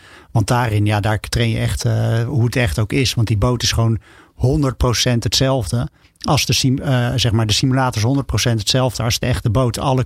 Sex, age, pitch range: male, 50-69, 115-130 Hz